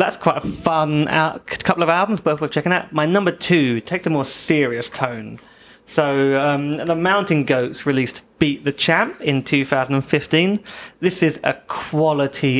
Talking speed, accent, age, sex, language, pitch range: 160 wpm, British, 30-49, male, English, 135-165 Hz